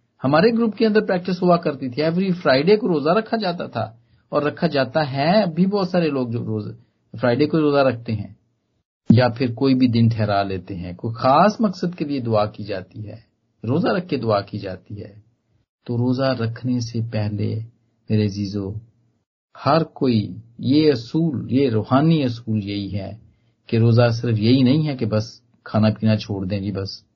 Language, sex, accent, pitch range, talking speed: Hindi, male, native, 110-160 Hz, 185 wpm